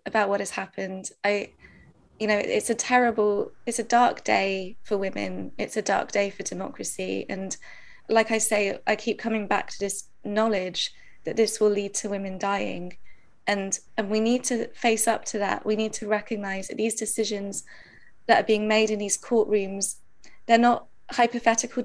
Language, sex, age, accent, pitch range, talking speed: English, female, 20-39, British, 205-230 Hz, 180 wpm